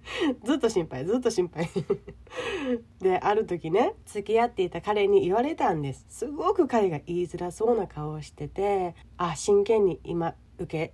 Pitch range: 165-260 Hz